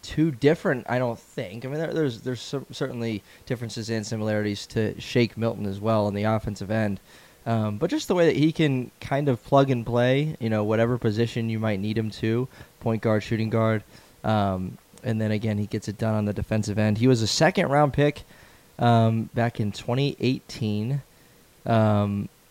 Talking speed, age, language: 185 wpm, 20-39, English